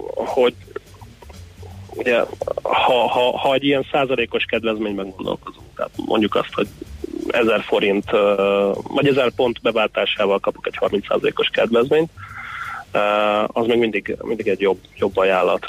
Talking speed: 125 wpm